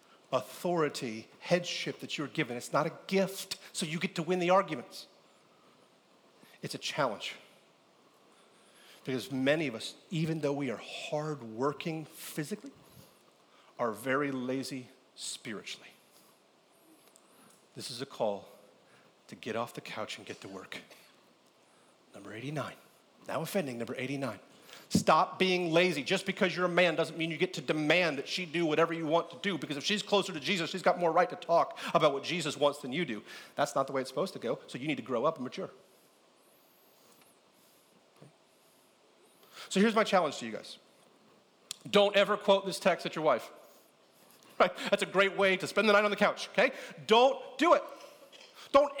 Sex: male